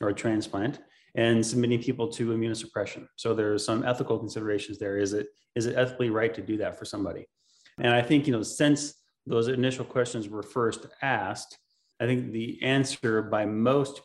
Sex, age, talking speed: male, 30-49, 190 wpm